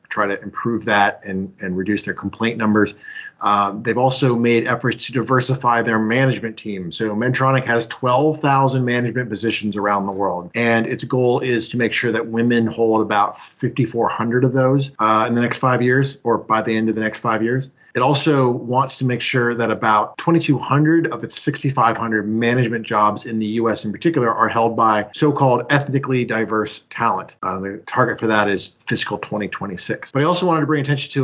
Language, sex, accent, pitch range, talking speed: English, male, American, 110-140 Hz, 190 wpm